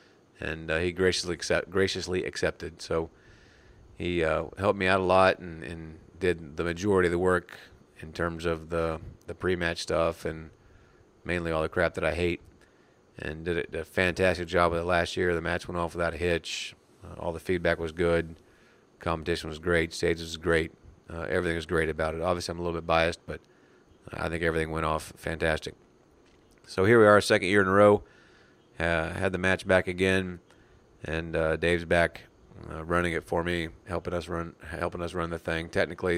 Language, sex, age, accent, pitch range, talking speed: English, male, 40-59, American, 80-90 Hz, 195 wpm